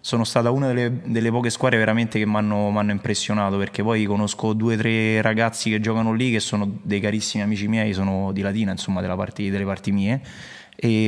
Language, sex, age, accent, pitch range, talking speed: Italian, male, 20-39, native, 100-115 Hz, 205 wpm